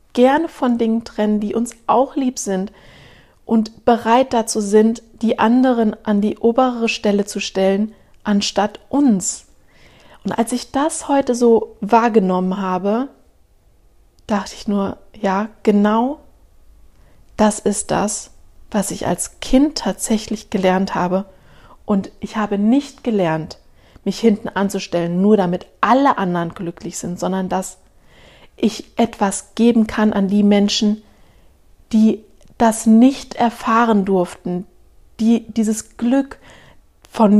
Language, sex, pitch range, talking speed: German, female, 190-230 Hz, 125 wpm